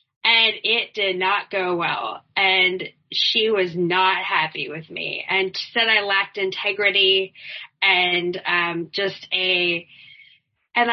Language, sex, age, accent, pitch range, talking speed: English, female, 20-39, American, 190-240 Hz, 125 wpm